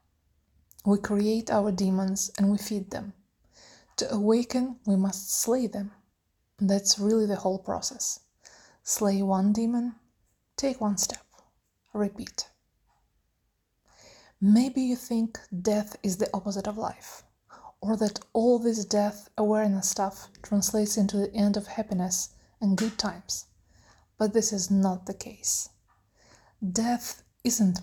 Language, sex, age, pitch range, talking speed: English, female, 20-39, 190-215 Hz, 125 wpm